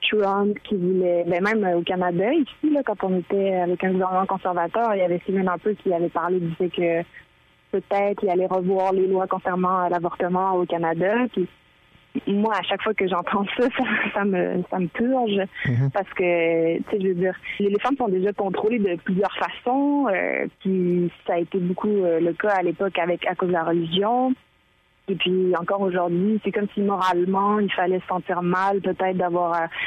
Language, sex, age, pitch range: French, female, 20-39, 180-205 Hz